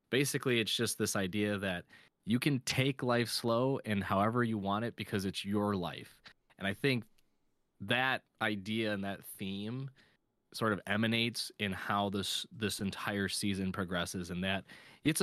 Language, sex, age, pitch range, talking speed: English, male, 20-39, 100-120 Hz, 160 wpm